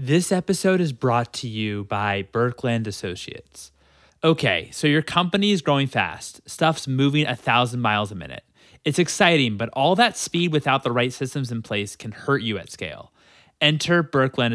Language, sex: English, male